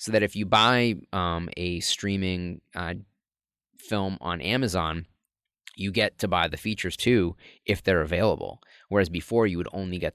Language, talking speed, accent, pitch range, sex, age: English, 165 wpm, American, 85-100 Hz, male, 20-39